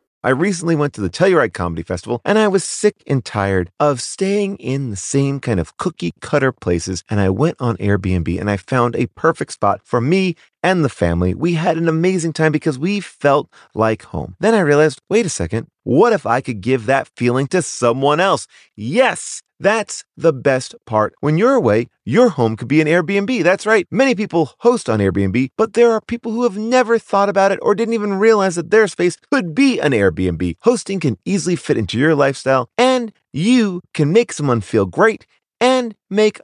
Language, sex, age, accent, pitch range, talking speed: English, male, 30-49, American, 125-200 Hz, 205 wpm